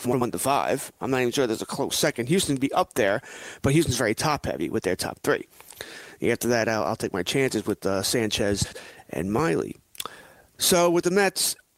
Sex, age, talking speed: male, 30-49, 215 wpm